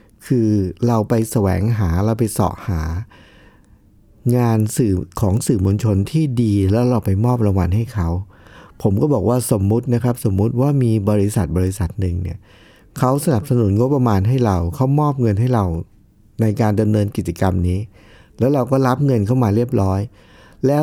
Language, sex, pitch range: Thai, male, 100-135 Hz